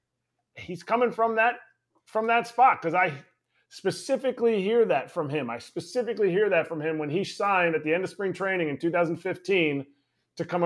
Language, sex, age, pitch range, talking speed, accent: English, male, 30-49, 140-195 Hz, 185 wpm, American